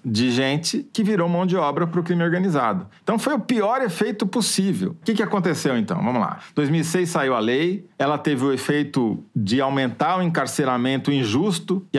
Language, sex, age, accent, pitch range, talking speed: Portuguese, male, 40-59, Brazilian, 135-185 Hz, 195 wpm